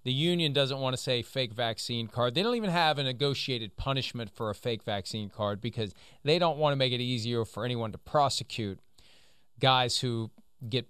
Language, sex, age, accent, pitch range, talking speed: English, male, 40-59, American, 115-145 Hz, 200 wpm